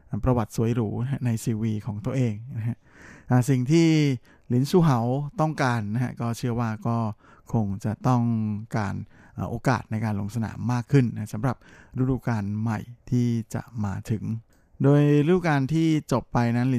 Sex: male